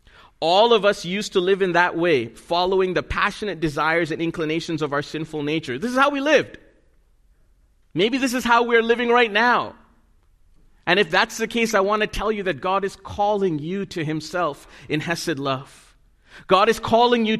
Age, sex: 40-59, male